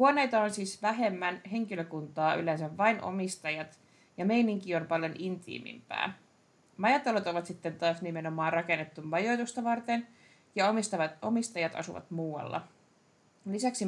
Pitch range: 160-220 Hz